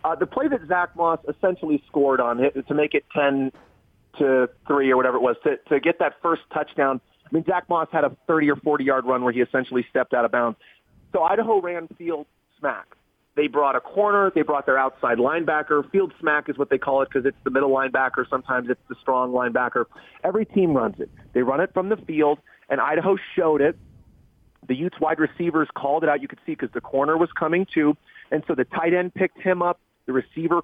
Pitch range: 140-175 Hz